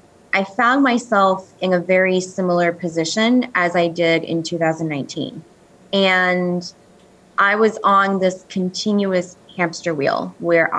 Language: English